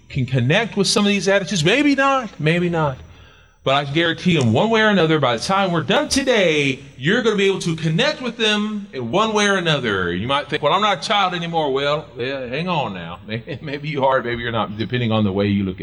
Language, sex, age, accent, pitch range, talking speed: English, male, 40-59, American, 115-180 Hz, 255 wpm